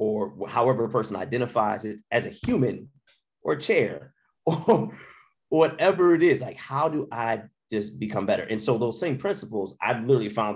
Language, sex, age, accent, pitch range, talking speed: English, male, 30-49, American, 100-130 Hz, 170 wpm